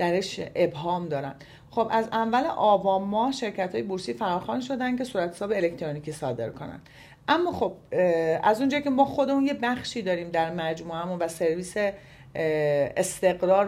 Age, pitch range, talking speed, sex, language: 40-59, 170-240 Hz, 140 wpm, female, Persian